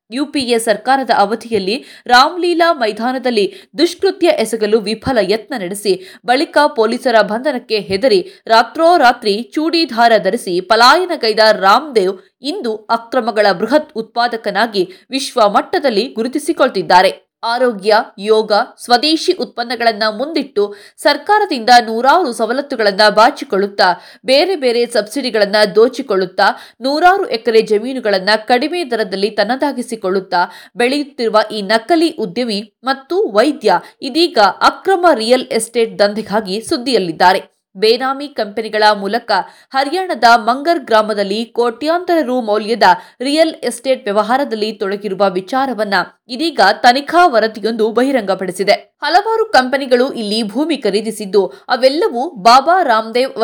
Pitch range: 215-280 Hz